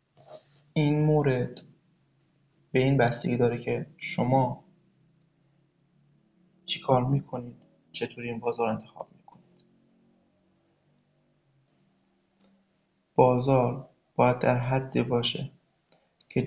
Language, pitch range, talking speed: Persian, 125-155 Hz, 80 wpm